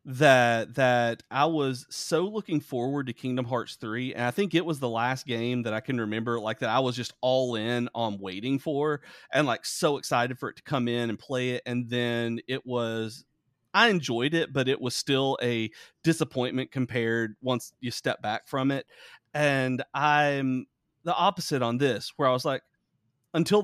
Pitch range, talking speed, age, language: 110-135 Hz, 195 wpm, 40-59, English